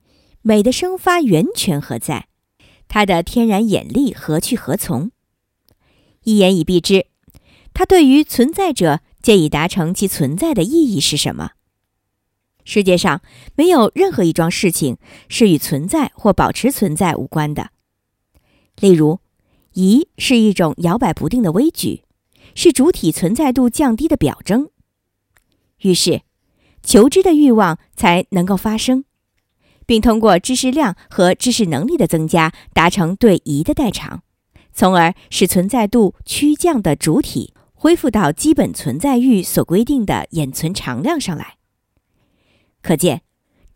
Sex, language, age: male, Chinese, 50-69